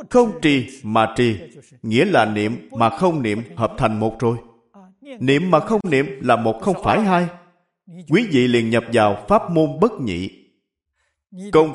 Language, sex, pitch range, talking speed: Vietnamese, male, 110-185 Hz, 170 wpm